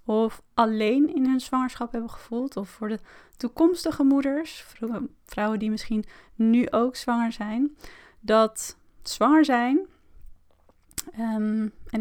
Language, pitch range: Dutch, 220-275 Hz